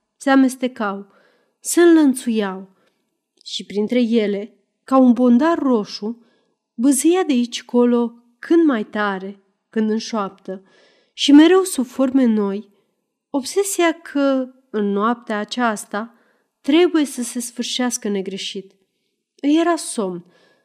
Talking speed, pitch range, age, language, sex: 110 wpm, 210-265 Hz, 30-49, Romanian, female